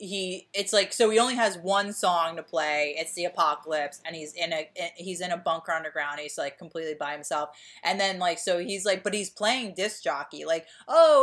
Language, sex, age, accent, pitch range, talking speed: English, female, 30-49, American, 160-220 Hz, 220 wpm